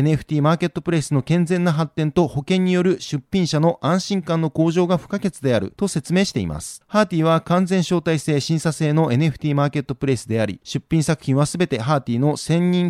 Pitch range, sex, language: 135-170 Hz, male, Japanese